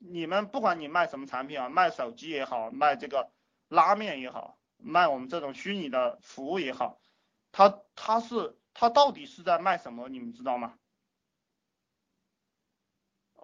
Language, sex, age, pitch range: Chinese, male, 30-49, 155-235 Hz